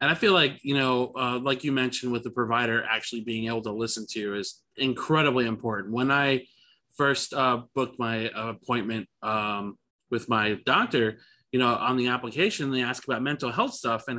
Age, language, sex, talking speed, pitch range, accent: 20-39, English, male, 195 wpm, 115-135 Hz, American